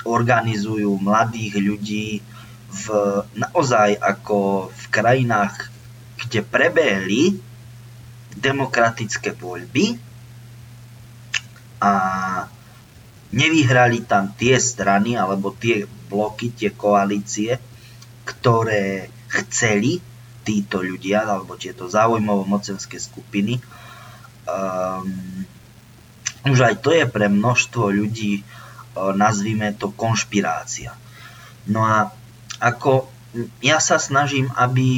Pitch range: 100-120 Hz